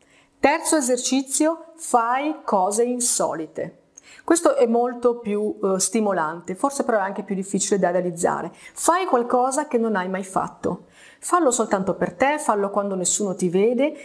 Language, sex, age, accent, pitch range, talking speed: Italian, female, 30-49, native, 200-260 Hz, 150 wpm